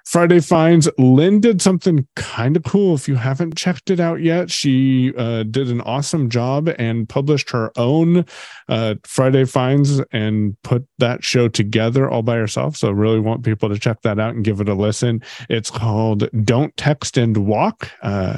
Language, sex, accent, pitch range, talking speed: English, male, American, 115-155 Hz, 185 wpm